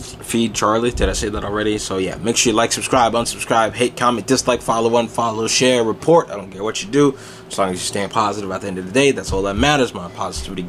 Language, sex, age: English, male, 20-39